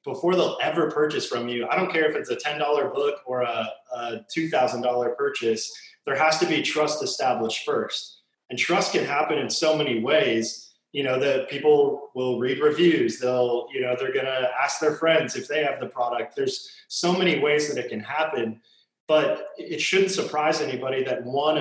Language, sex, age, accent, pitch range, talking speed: English, male, 20-39, American, 130-180 Hz, 190 wpm